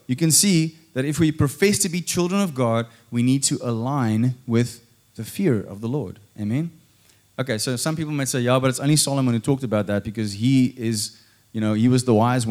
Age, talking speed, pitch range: 20-39, 225 wpm, 115-160 Hz